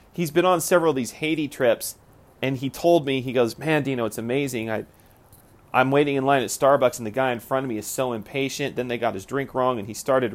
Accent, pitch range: American, 115-140 Hz